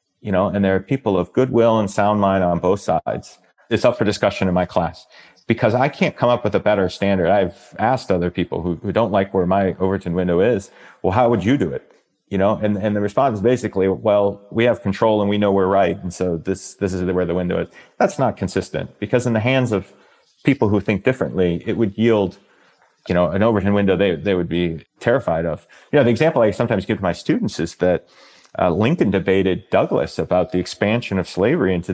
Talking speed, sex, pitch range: 230 wpm, male, 90-115 Hz